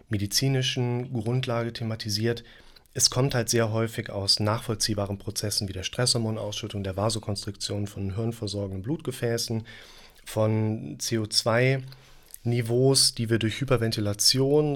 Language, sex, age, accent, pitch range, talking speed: German, male, 30-49, German, 105-130 Hz, 100 wpm